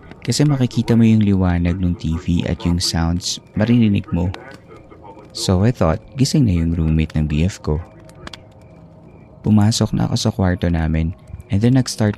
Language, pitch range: Filipino, 90-115 Hz